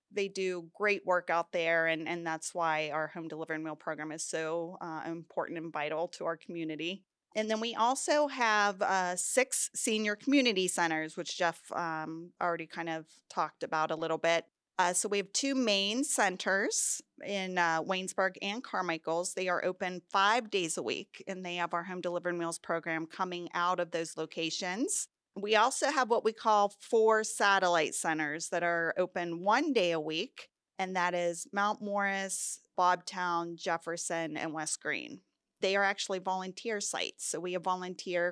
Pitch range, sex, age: 170-210 Hz, female, 30-49